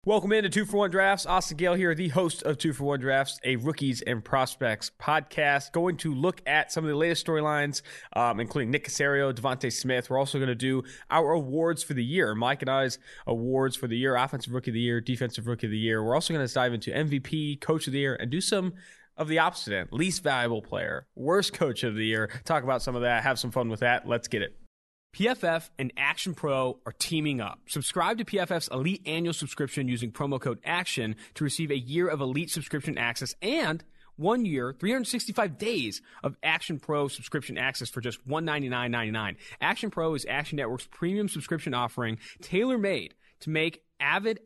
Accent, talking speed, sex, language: American, 205 wpm, male, English